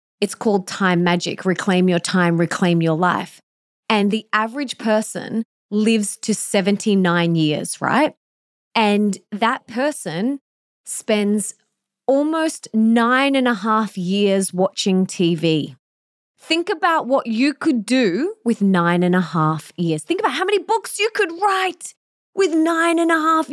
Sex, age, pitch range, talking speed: female, 20-39, 190-265 Hz, 145 wpm